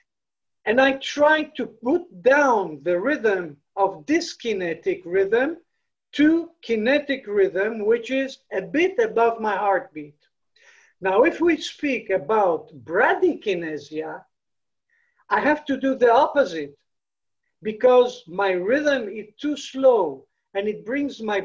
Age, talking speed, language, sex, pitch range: 60-79, 125 wpm, English, male, 200-330 Hz